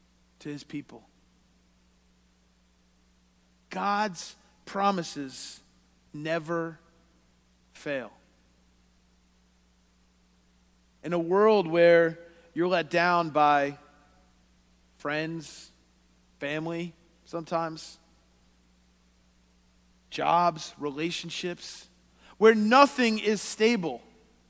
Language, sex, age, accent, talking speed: English, male, 40-59, American, 55 wpm